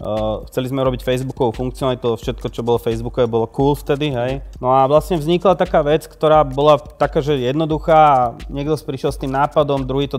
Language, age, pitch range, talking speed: Slovak, 20-39, 120-140 Hz, 200 wpm